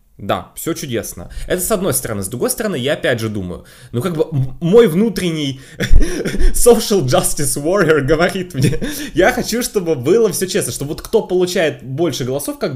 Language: Russian